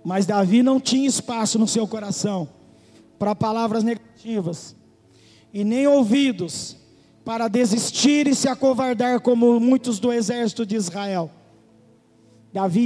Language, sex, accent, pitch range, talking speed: Portuguese, male, Brazilian, 200-310 Hz, 120 wpm